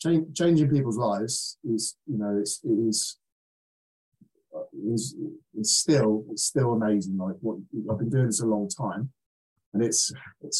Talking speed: 165 wpm